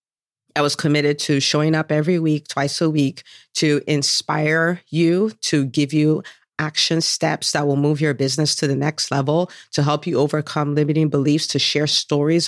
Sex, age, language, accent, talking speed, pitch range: female, 40-59, English, American, 180 wpm, 145-180 Hz